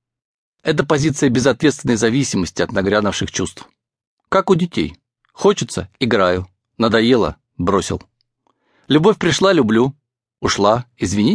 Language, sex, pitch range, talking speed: English, male, 110-155 Hz, 100 wpm